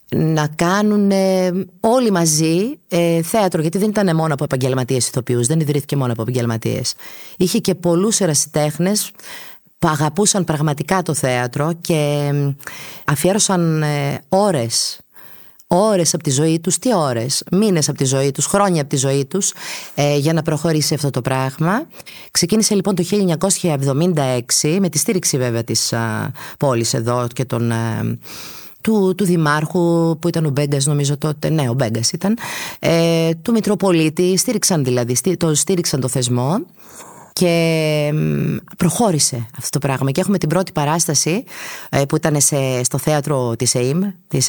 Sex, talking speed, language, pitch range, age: female, 140 wpm, Greek, 135-180 Hz, 30-49